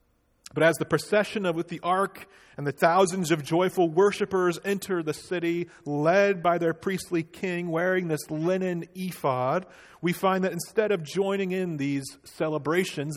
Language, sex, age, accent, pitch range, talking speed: English, male, 40-59, American, 145-185 Hz, 160 wpm